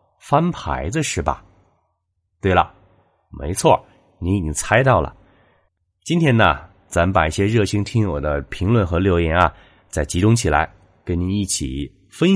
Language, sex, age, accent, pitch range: Chinese, male, 30-49, native, 80-105 Hz